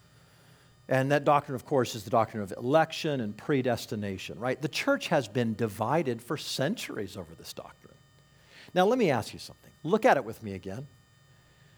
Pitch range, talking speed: 115-150 Hz, 180 wpm